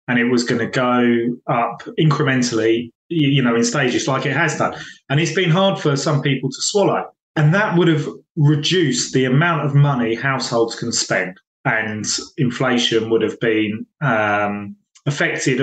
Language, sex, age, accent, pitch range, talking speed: English, male, 20-39, British, 130-170 Hz, 170 wpm